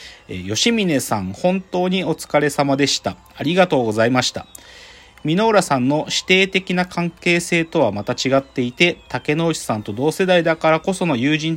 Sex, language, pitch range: male, Japanese, 115-170 Hz